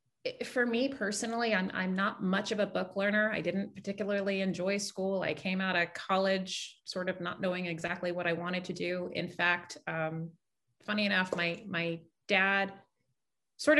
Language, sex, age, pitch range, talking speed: English, female, 30-49, 165-200 Hz, 175 wpm